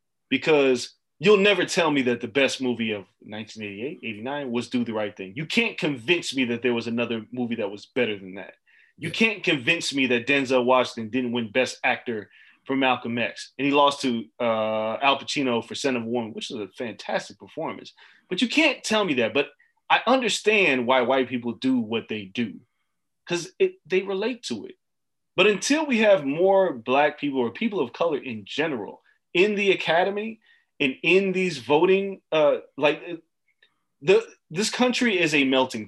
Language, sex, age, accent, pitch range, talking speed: English, male, 30-49, American, 125-190 Hz, 185 wpm